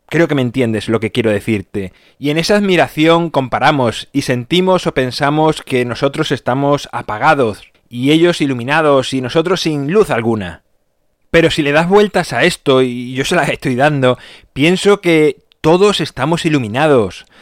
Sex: male